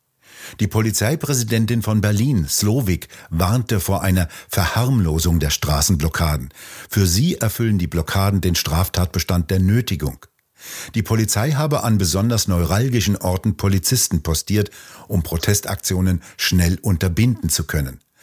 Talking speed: 115 wpm